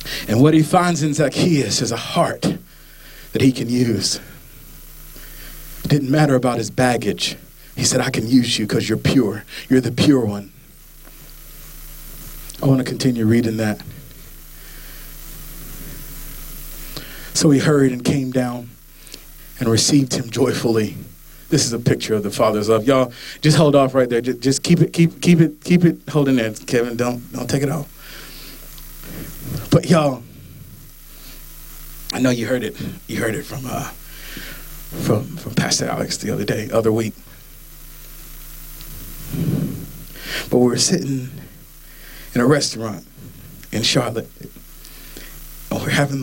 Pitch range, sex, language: 120-150 Hz, male, English